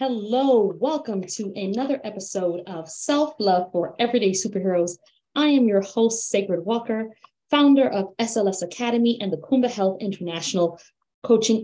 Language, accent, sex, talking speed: English, American, female, 140 wpm